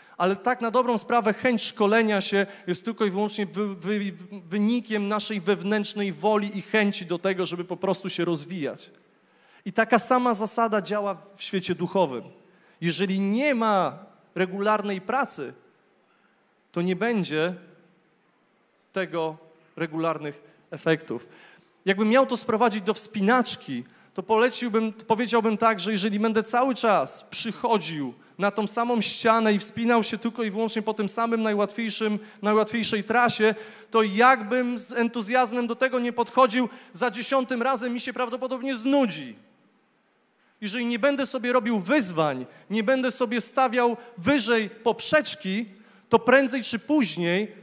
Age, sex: 30-49, male